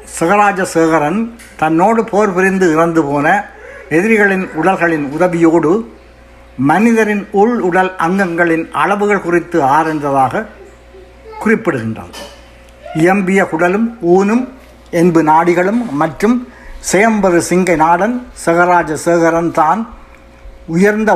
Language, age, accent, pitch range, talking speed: Tamil, 60-79, native, 135-185 Hz, 80 wpm